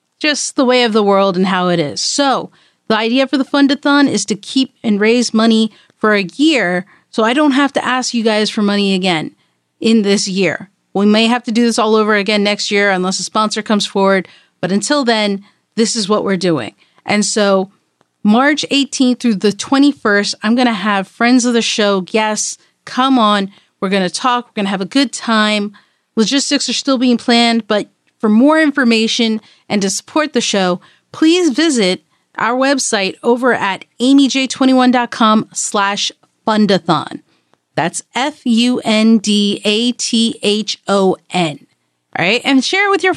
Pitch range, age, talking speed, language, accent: 200-265 Hz, 40-59, 185 wpm, English, American